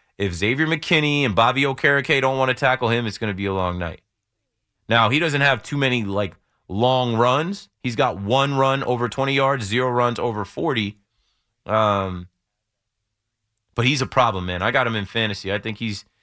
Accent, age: American, 30-49